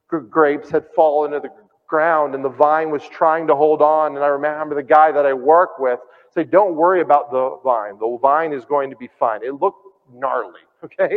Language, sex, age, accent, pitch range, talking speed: English, male, 40-59, American, 130-165 Hz, 215 wpm